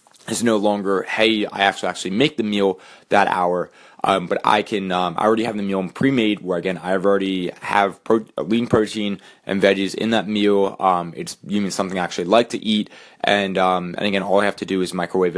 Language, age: English, 20-39